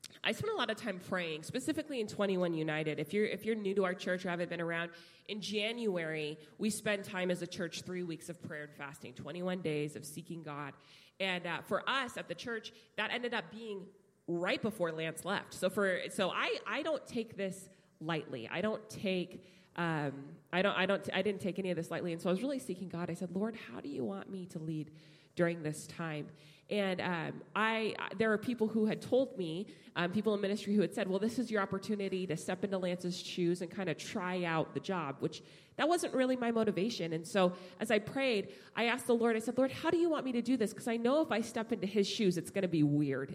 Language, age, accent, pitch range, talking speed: English, 20-39, American, 170-220 Hz, 245 wpm